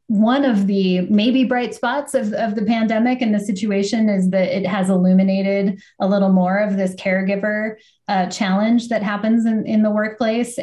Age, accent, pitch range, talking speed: 20-39, American, 185-215 Hz, 180 wpm